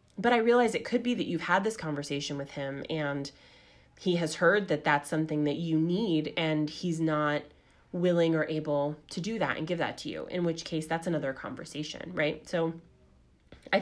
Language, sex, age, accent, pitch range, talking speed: English, female, 20-39, American, 150-180 Hz, 200 wpm